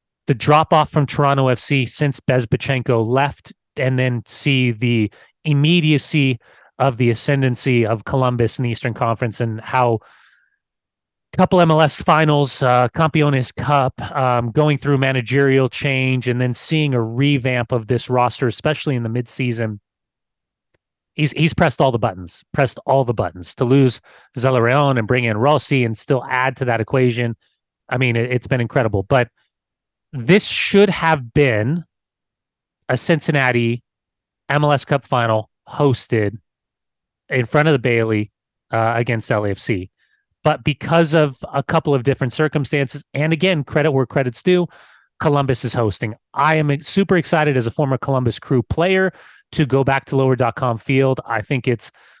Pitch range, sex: 115-145 Hz, male